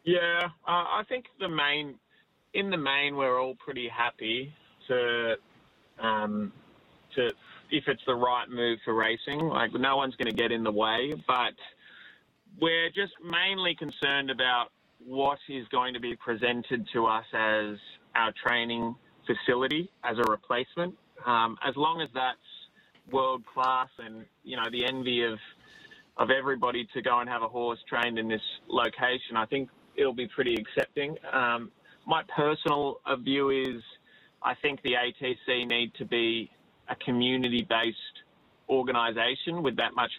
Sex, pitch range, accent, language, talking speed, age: male, 115-135 Hz, Australian, English, 150 wpm, 20-39